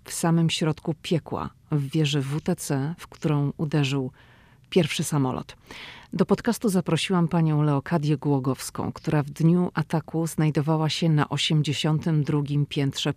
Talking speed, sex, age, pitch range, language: 125 wpm, female, 40-59, 140-165 Hz, Polish